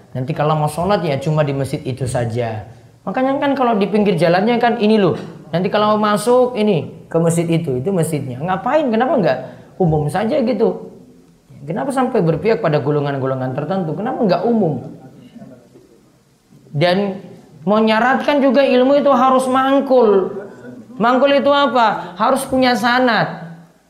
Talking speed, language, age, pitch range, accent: 145 wpm, Indonesian, 30-49, 160-245 Hz, native